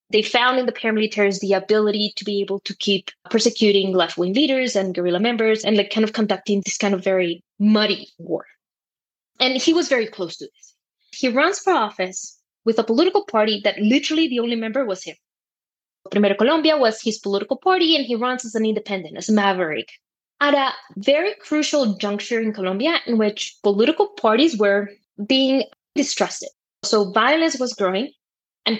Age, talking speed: 20-39, 175 wpm